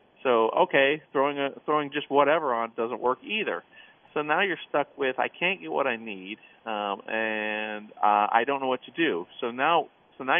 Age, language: 40-59, English